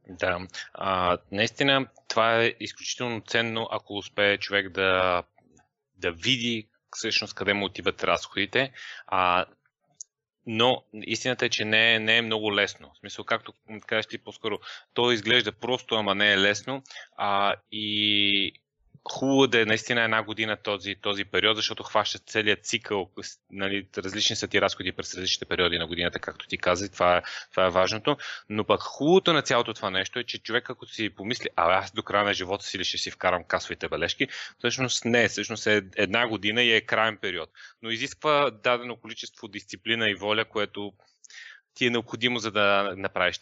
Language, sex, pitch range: Bulgarian, male, 100-115 Hz